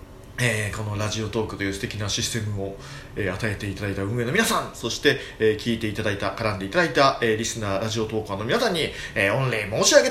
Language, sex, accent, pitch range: Japanese, male, native, 100-150 Hz